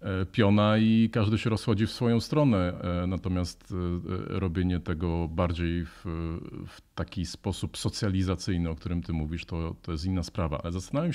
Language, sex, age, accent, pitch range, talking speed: Polish, male, 40-59, native, 85-105 Hz, 150 wpm